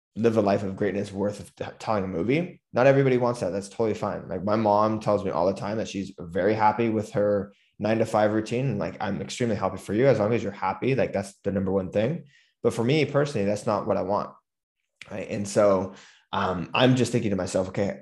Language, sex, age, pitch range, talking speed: English, male, 20-39, 100-115 Hz, 235 wpm